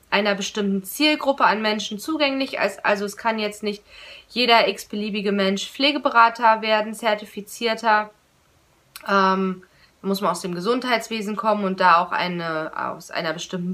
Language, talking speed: German, 140 wpm